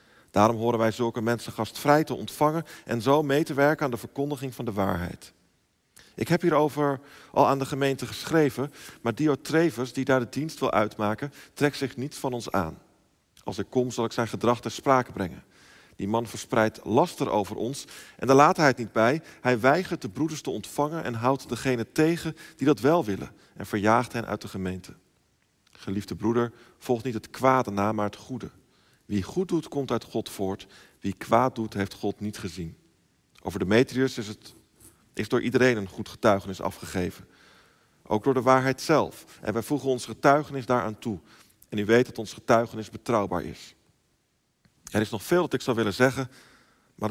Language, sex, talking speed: Dutch, male, 190 wpm